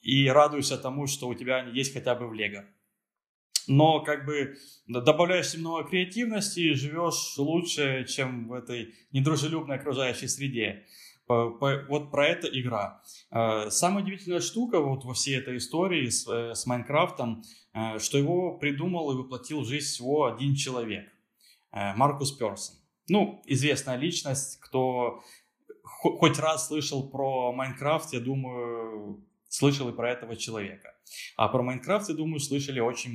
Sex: male